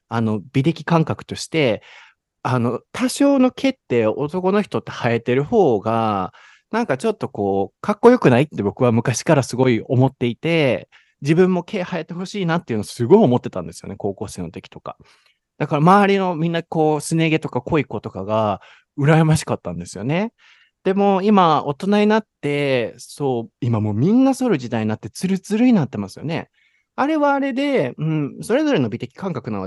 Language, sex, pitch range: Japanese, male, 115-190 Hz